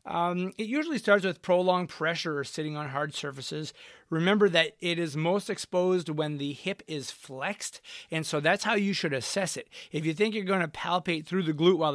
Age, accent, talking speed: 30-49, American, 210 wpm